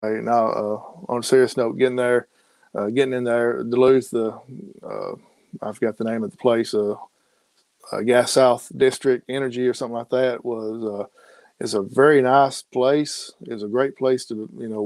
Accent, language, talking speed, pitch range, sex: American, English, 190 wpm, 115-135 Hz, male